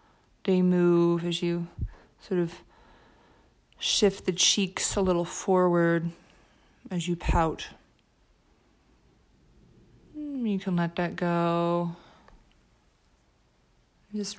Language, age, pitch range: English, 20-39, 170-195 Hz